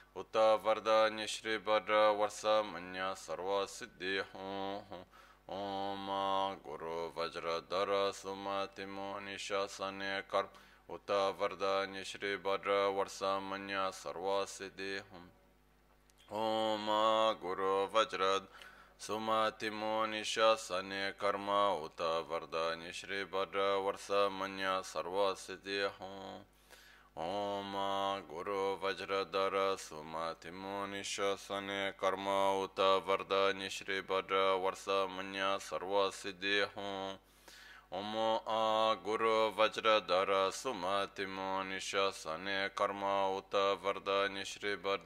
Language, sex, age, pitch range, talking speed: Italian, male, 20-39, 95-100 Hz, 90 wpm